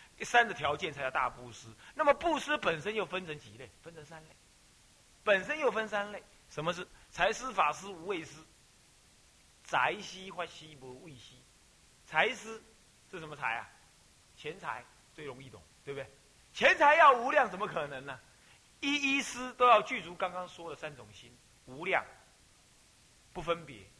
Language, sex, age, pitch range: Chinese, male, 30-49, 135-220 Hz